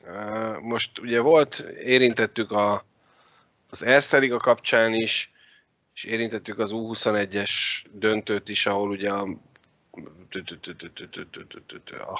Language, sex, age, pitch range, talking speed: Hungarian, male, 30-49, 100-115 Hz, 90 wpm